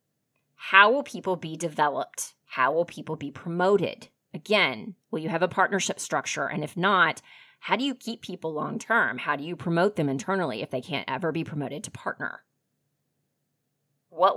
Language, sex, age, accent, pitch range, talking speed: English, female, 30-49, American, 150-190 Hz, 170 wpm